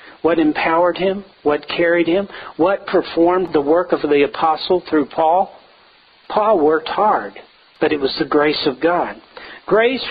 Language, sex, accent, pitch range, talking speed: English, male, American, 145-205 Hz, 155 wpm